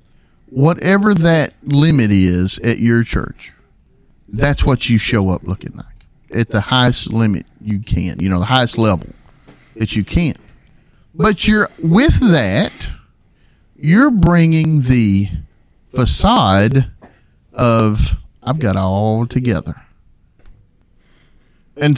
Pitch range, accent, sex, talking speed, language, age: 100-140 Hz, American, male, 115 wpm, English, 40-59